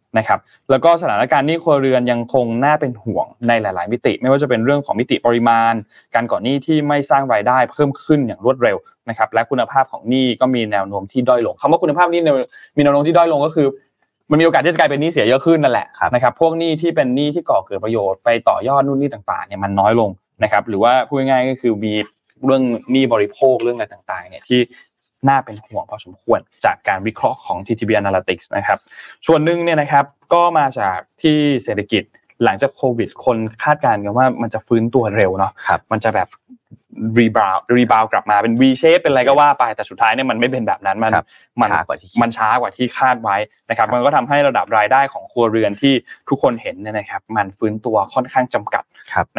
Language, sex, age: Thai, male, 20-39